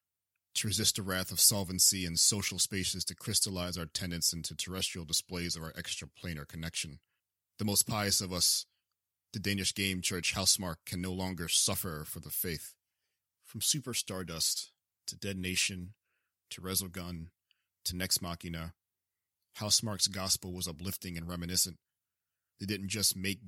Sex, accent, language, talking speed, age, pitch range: male, American, English, 145 wpm, 30-49, 85-95 Hz